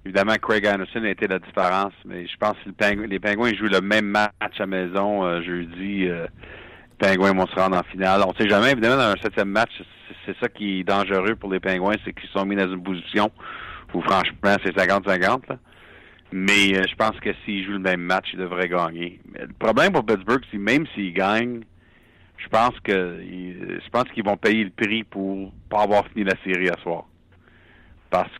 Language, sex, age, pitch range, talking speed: French, male, 50-69, 95-105 Hz, 205 wpm